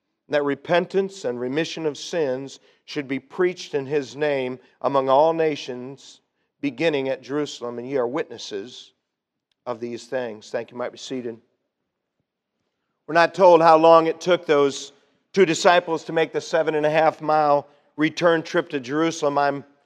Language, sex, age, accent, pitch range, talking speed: English, male, 50-69, American, 150-190 Hz, 165 wpm